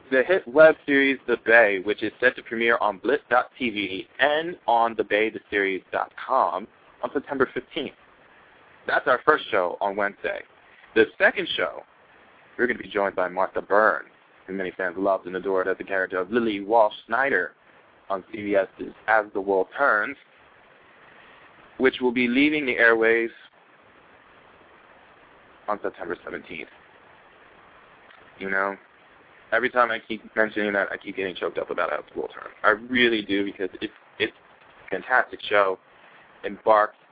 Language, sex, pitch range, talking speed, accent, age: English, male, 95-125 Hz, 145 wpm, American, 20-39